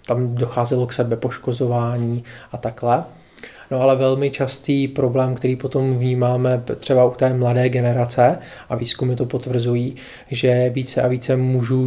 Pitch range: 125-140 Hz